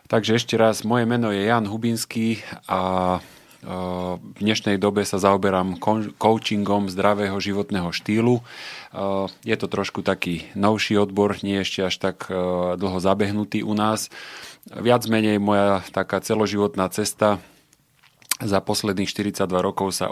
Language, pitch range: Slovak, 95-105 Hz